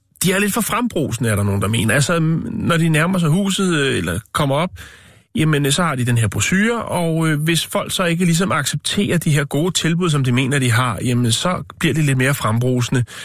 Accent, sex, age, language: native, male, 30-49, Danish